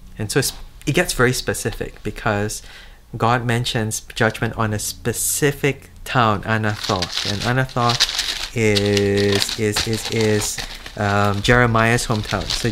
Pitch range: 100-120 Hz